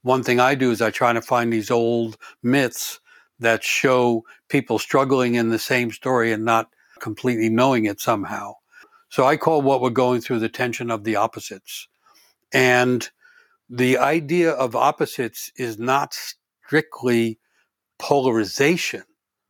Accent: American